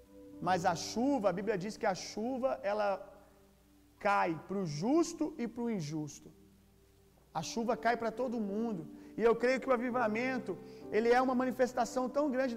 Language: Gujarati